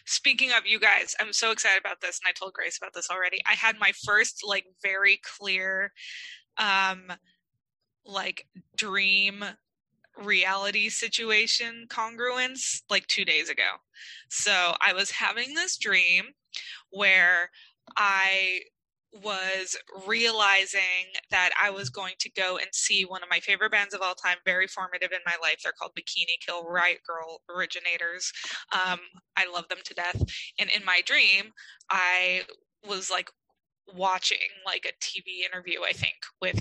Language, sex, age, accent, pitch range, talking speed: English, female, 20-39, American, 185-225 Hz, 150 wpm